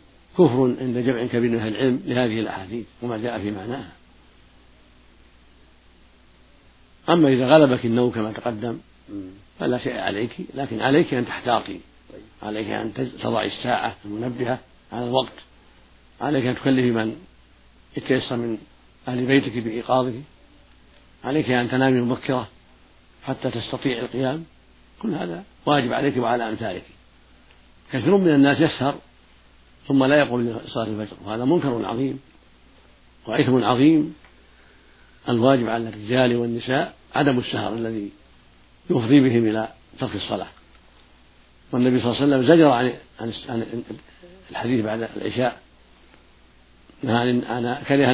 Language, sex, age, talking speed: Arabic, male, 60-79, 115 wpm